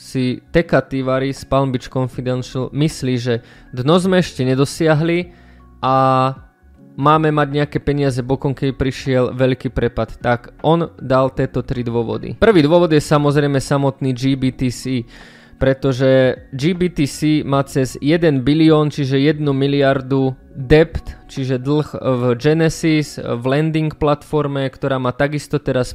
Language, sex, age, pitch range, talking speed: Slovak, male, 20-39, 130-150 Hz, 125 wpm